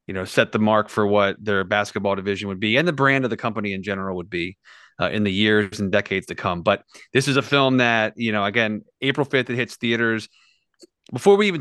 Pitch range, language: 105-130 Hz, English